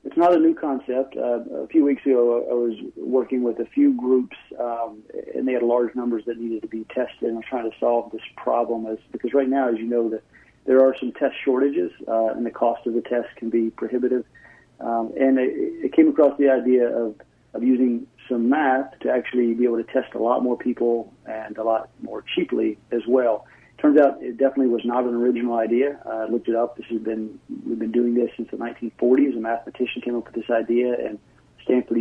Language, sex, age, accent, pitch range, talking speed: English, male, 40-59, American, 115-130 Hz, 220 wpm